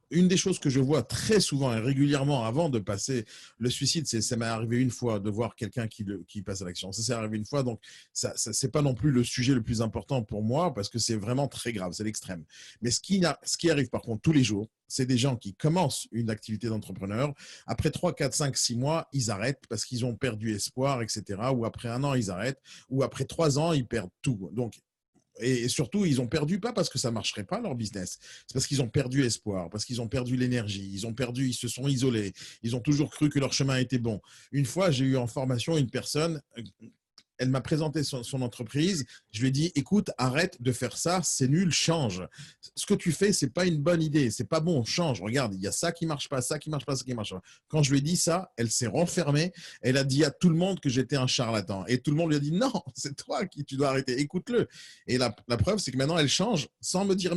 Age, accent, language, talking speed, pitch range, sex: 40-59, French, French, 255 wpm, 115-155 Hz, male